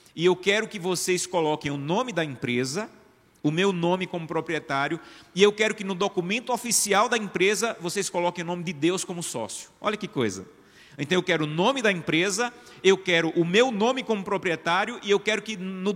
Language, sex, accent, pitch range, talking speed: Portuguese, male, Brazilian, 160-210 Hz, 205 wpm